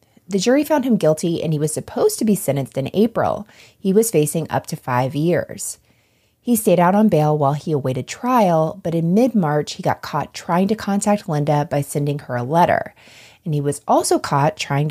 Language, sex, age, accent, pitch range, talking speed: English, female, 30-49, American, 140-200 Hz, 205 wpm